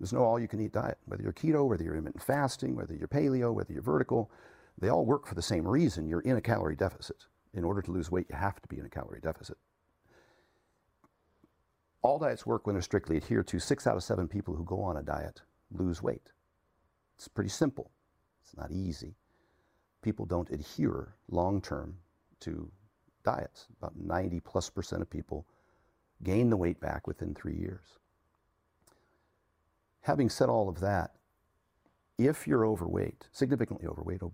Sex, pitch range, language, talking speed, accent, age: male, 80-105 Hz, English, 170 wpm, American, 50-69